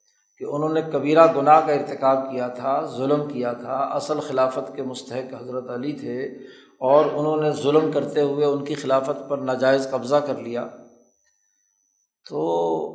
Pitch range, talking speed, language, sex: 135-165 Hz, 160 wpm, Urdu, male